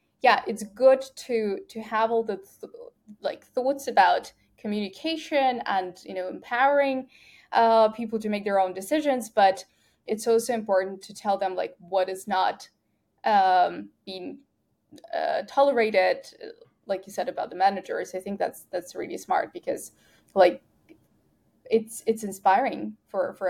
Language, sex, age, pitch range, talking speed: English, female, 10-29, 195-265 Hz, 145 wpm